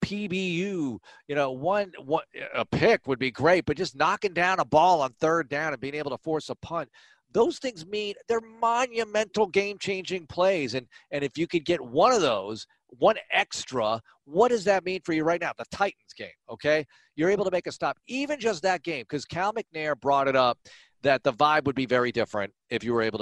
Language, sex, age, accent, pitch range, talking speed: English, male, 40-59, American, 130-175 Hz, 215 wpm